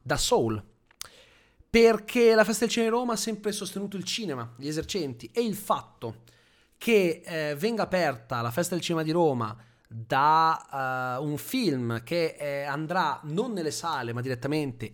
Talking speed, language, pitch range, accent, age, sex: 165 wpm, Italian, 120-160 Hz, native, 30-49, male